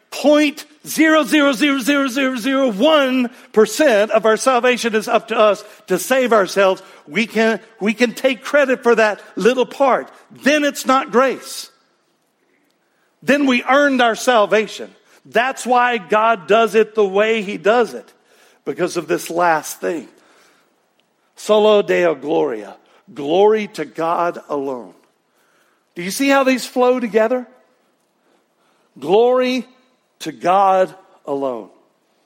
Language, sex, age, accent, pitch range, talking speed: English, male, 60-79, American, 165-260 Hz, 120 wpm